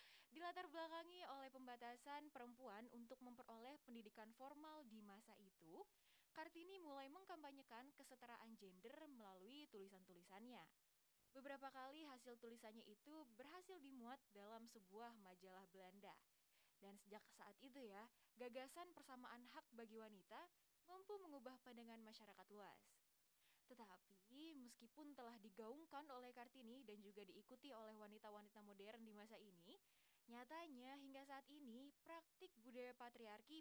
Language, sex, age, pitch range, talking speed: Indonesian, female, 20-39, 215-275 Hz, 120 wpm